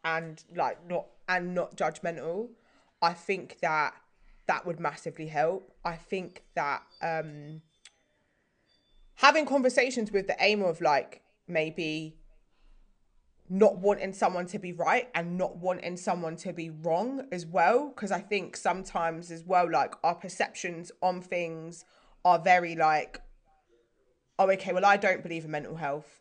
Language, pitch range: English, 165-200 Hz